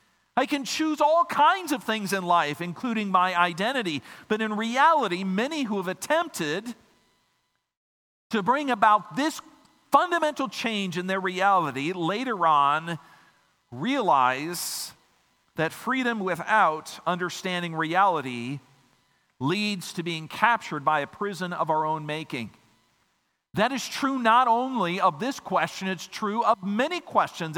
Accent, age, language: American, 50-69, English